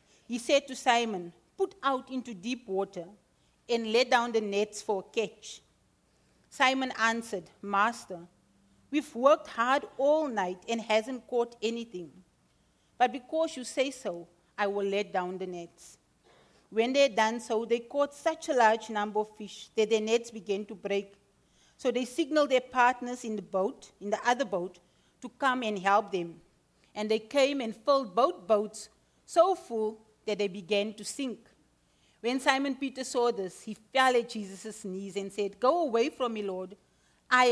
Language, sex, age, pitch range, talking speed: English, female, 40-59, 200-255 Hz, 175 wpm